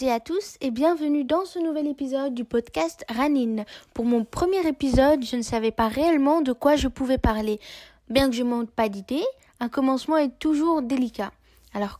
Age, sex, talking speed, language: 20-39, female, 185 wpm, Arabic